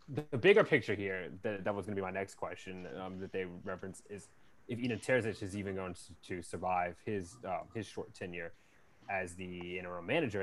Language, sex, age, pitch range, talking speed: English, male, 20-39, 95-115 Hz, 205 wpm